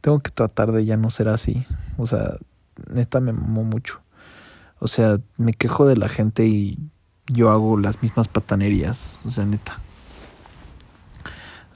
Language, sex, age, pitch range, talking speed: English, male, 30-49, 105-120 Hz, 160 wpm